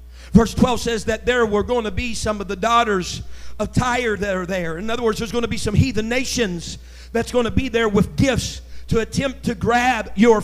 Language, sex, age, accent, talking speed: English, male, 50-69, American, 230 wpm